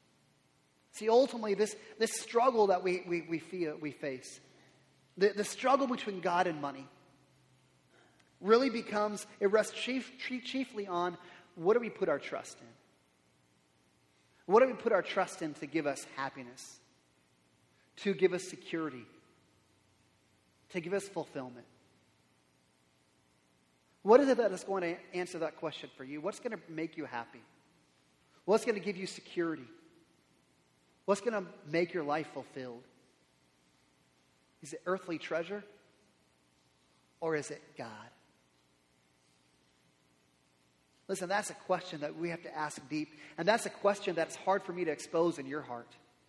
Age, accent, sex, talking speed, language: 30-49, American, male, 145 wpm, English